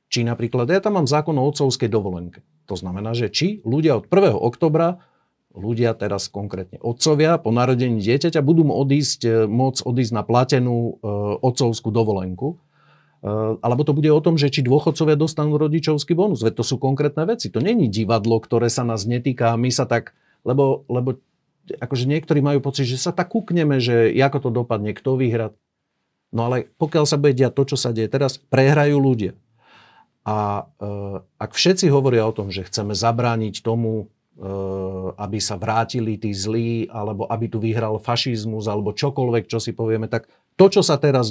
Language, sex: Slovak, male